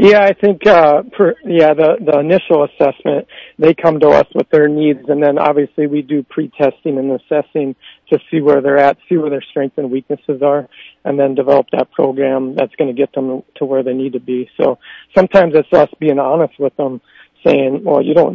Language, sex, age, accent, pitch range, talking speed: English, male, 50-69, American, 130-150 Hz, 210 wpm